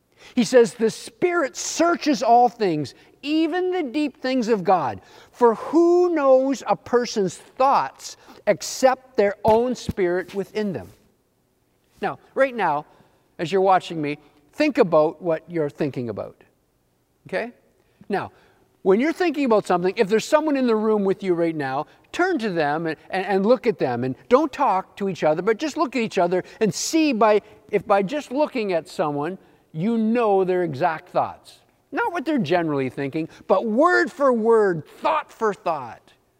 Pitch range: 170-255 Hz